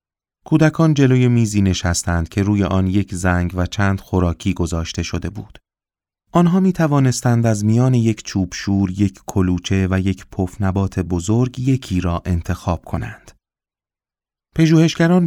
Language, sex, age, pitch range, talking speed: Persian, male, 30-49, 90-120 Hz, 135 wpm